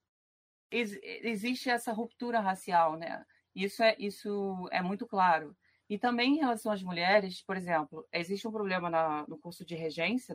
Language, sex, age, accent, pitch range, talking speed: Portuguese, female, 30-49, Brazilian, 170-210 Hz, 155 wpm